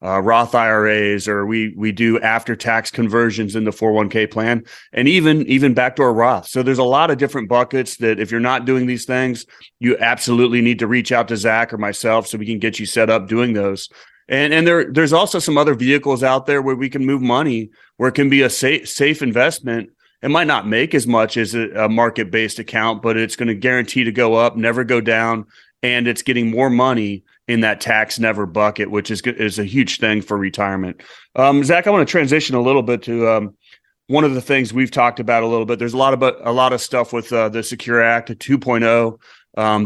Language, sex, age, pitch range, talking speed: English, male, 30-49, 110-130 Hz, 230 wpm